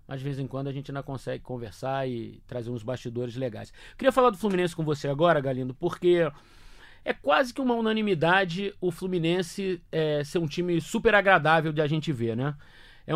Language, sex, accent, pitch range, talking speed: Portuguese, male, Brazilian, 140-185 Hz, 195 wpm